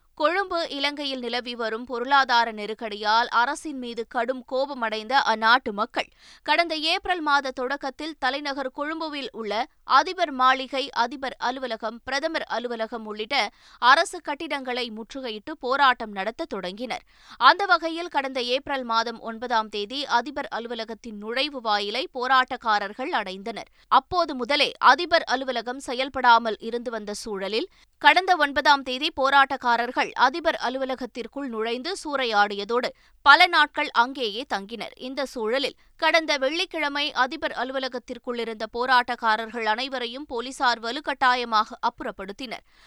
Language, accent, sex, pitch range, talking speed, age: Tamil, native, female, 230-290 Hz, 105 wpm, 20-39